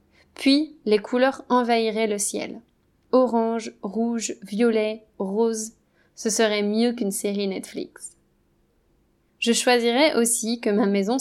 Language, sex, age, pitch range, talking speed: French, female, 20-39, 205-245 Hz, 120 wpm